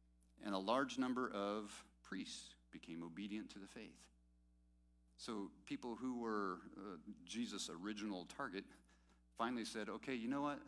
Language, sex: English, male